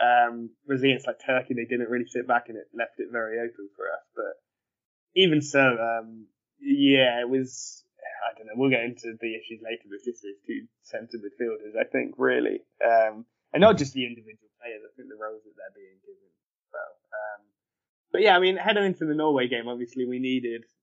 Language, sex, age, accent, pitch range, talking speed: English, male, 10-29, British, 120-150 Hz, 210 wpm